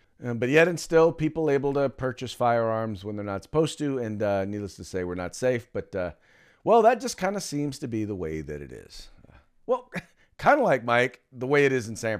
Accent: American